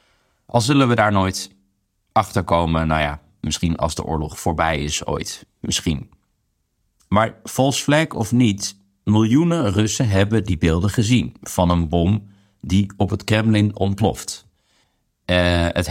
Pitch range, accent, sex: 85-105 Hz, Dutch, male